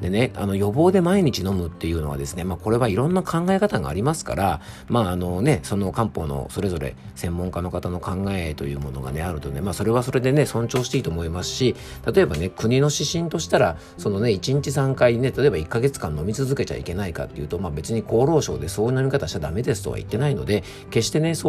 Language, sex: Japanese, male